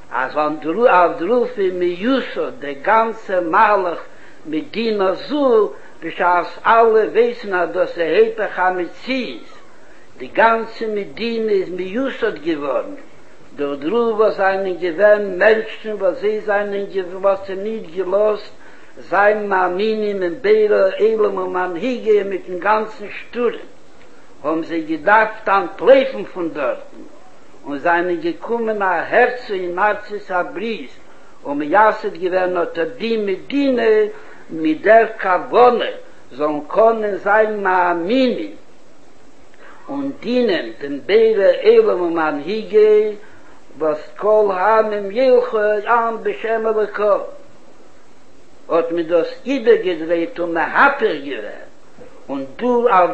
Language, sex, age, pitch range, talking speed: Hebrew, male, 60-79, 180-240 Hz, 120 wpm